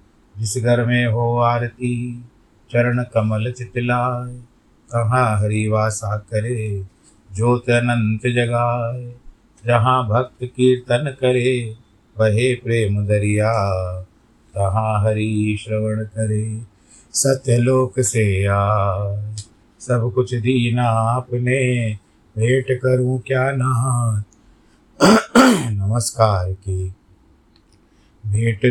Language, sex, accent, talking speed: Hindi, male, native, 80 wpm